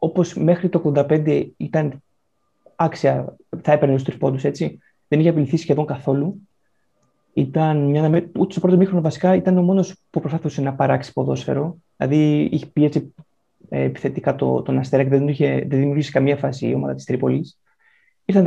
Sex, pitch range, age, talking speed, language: male, 135-165 Hz, 20-39, 160 wpm, Greek